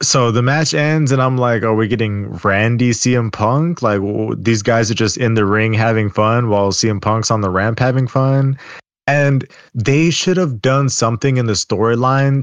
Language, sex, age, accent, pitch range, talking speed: English, male, 20-39, American, 105-135 Hz, 195 wpm